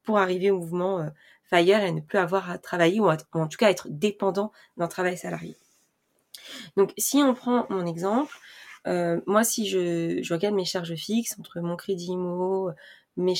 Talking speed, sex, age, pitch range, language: 180 wpm, female, 20-39, 170-200 Hz, French